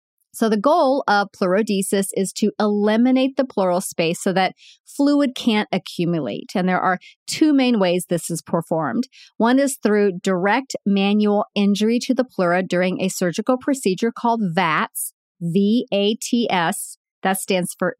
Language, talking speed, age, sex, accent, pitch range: English, 145 wpm, 40-59, female, American, 190-265 Hz